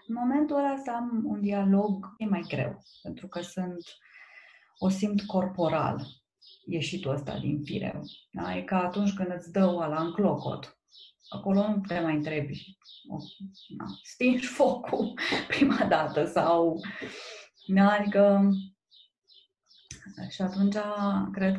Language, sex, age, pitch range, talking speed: Romanian, female, 20-39, 150-195 Hz, 130 wpm